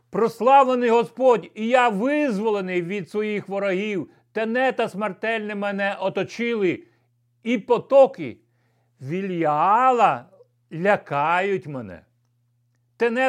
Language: Ukrainian